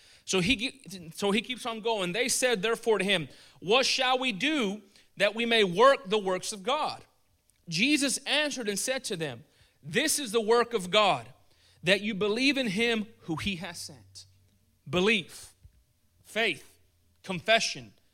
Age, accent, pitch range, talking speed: 30-49, American, 155-235 Hz, 160 wpm